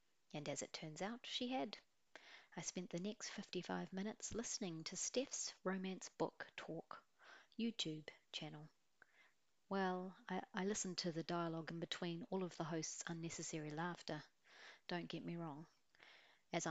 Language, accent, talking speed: English, Australian, 145 wpm